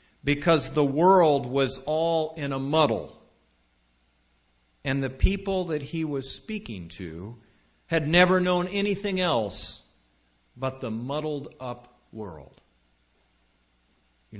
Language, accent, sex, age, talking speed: English, American, male, 50-69, 115 wpm